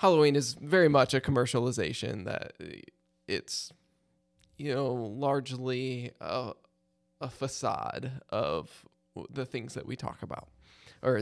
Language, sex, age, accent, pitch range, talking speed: English, male, 20-39, American, 115-140 Hz, 120 wpm